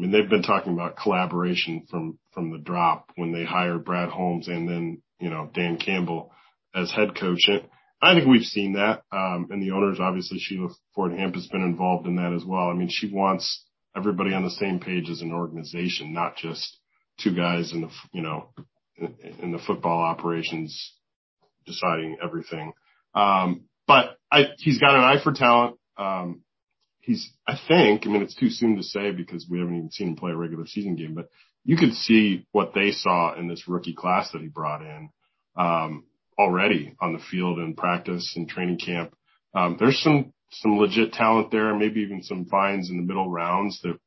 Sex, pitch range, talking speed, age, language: male, 85-100 Hz, 195 wpm, 40-59, English